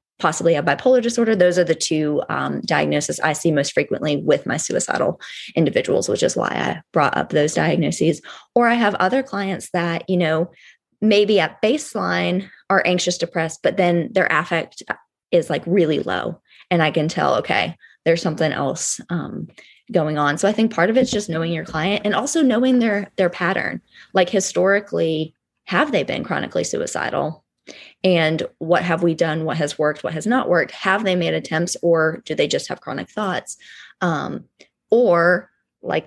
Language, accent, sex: English, American, female